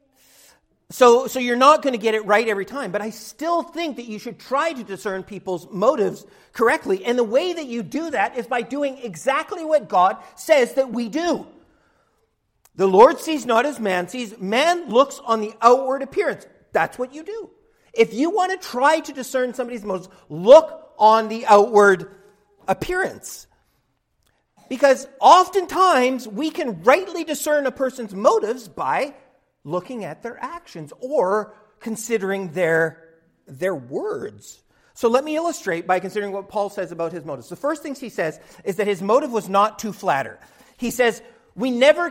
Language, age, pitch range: English, 50-69, 205-305 Hz